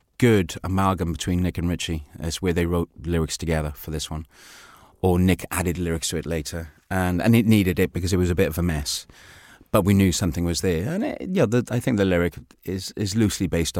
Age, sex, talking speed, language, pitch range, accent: 30-49, male, 235 wpm, English, 85-110 Hz, British